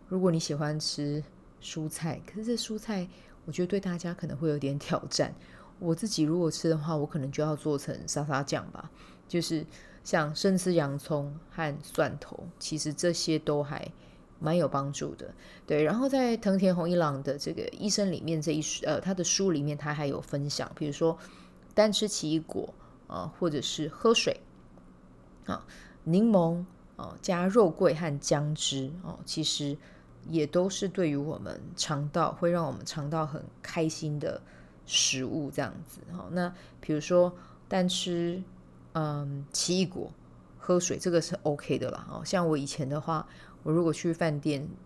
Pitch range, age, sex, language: 145-175 Hz, 20-39, female, Chinese